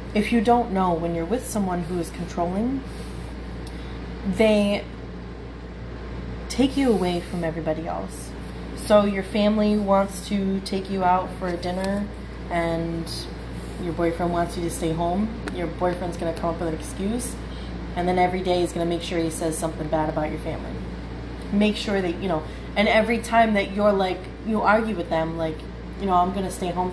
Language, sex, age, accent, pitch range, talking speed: English, female, 30-49, American, 165-205 Hz, 185 wpm